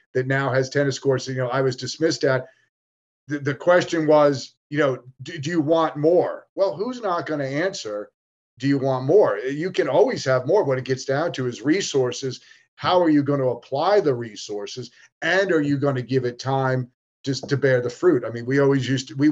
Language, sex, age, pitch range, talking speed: English, male, 40-59, 130-150 Hz, 225 wpm